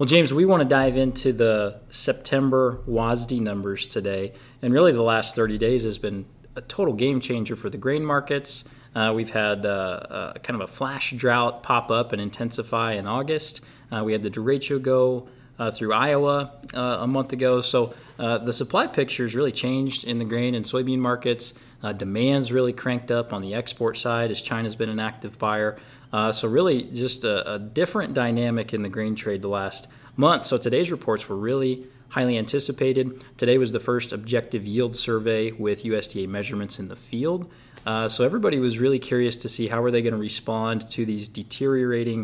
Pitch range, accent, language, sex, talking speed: 110-130 Hz, American, English, male, 195 wpm